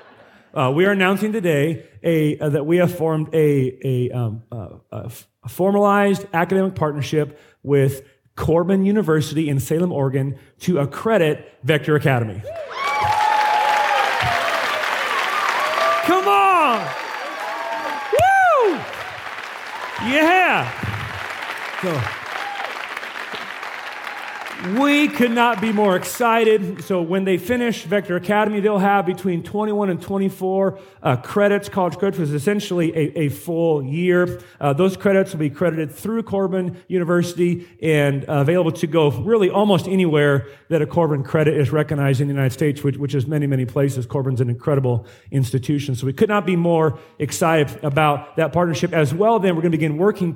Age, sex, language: 40-59, male, English